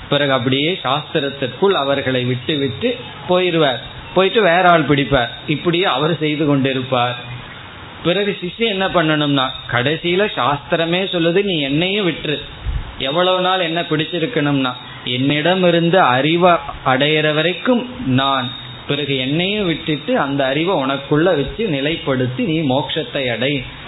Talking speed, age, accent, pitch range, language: 105 wpm, 20-39, native, 130-170 Hz, Tamil